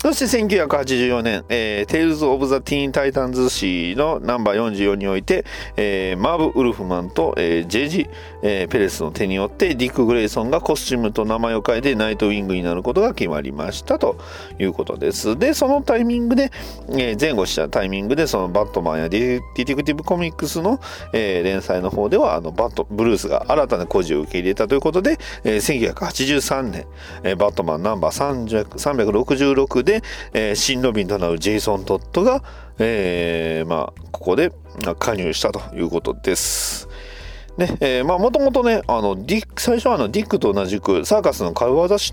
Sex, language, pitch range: male, Japanese, 95-155 Hz